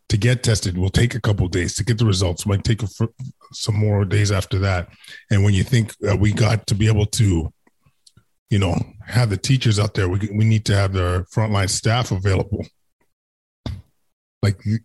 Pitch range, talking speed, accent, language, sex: 95-110 Hz, 200 wpm, American, English, male